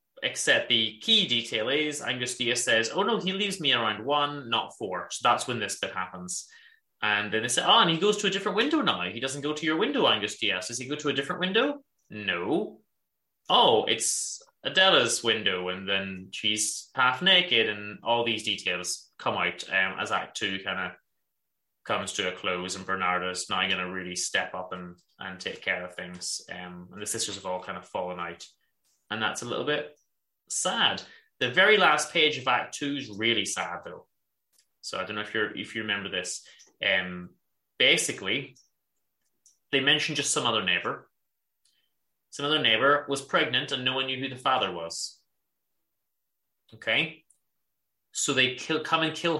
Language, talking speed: English, 185 wpm